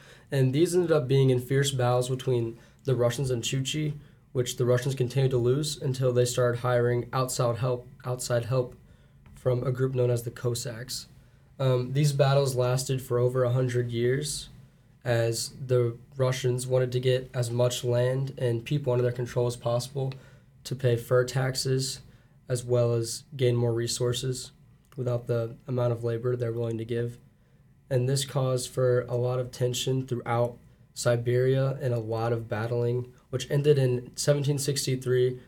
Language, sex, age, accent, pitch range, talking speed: English, male, 10-29, American, 120-135 Hz, 160 wpm